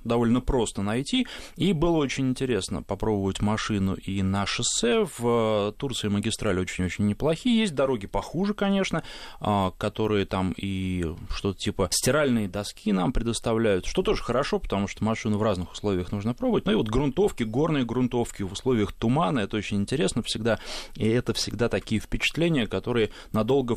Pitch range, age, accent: 100-130 Hz, 20-39, native